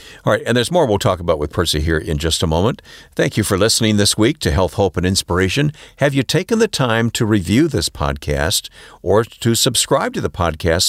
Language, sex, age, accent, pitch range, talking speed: English, male, 50-69, American, 85-120 Hz, 225 wpm